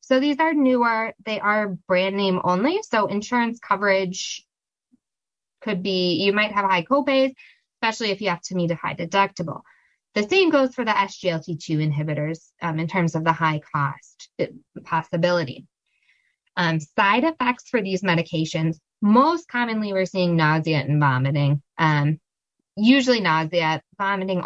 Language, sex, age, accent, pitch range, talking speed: English, female, 20-39, American, 165-245 Hz, 145 wpm